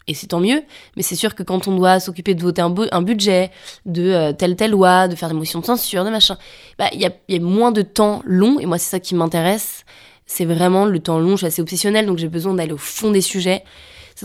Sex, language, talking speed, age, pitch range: female, French, 255 wpm, 20-39, 175-205 Hz